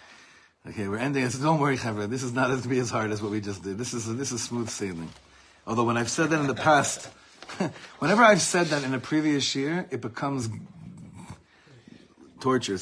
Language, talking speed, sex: English, 210 wpm, male